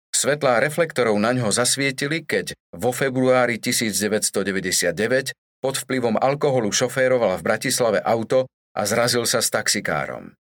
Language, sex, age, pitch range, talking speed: Slovak, male, 40-59, 115-140 Hz, 120 wpm